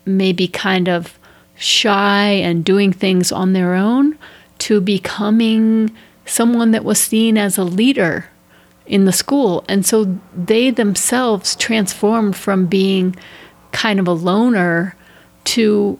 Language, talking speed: English, 130 wpm